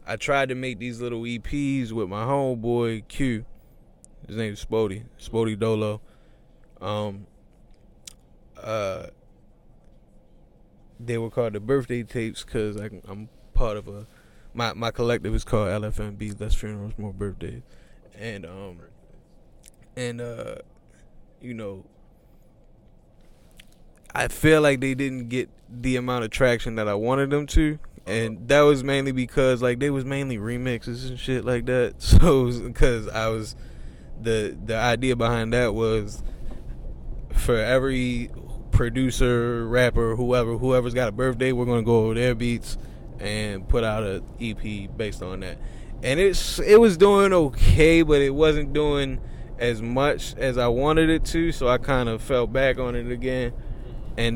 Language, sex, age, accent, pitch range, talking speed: English, male, 20-39, American, 110-130 Hz, 150 wpm